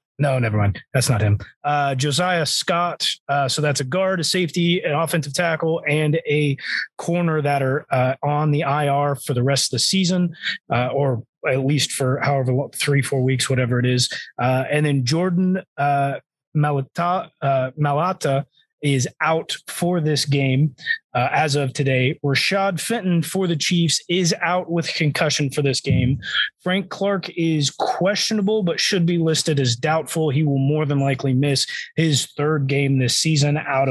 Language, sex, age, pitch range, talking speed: English, male, 30-49, 135-165 Hz, 175 wpm